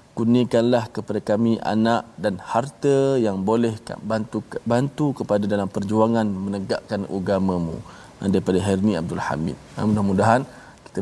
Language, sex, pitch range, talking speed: Malayalam, male, 105-125 Hz, 115 wpm